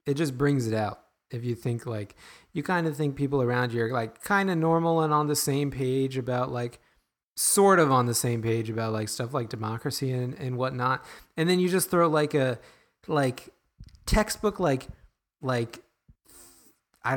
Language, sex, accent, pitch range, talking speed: English, male, American, 110-150 Hz, 190 wpm